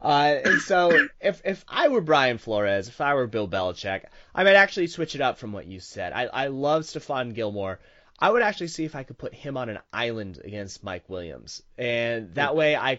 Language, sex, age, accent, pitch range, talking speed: English, male, 30-49, American, 100-120 Hz, 220 wpm